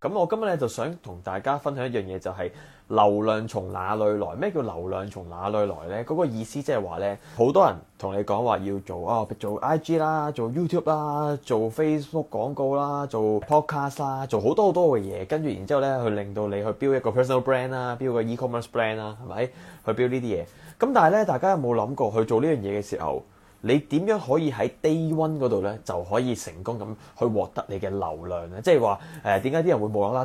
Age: 20-39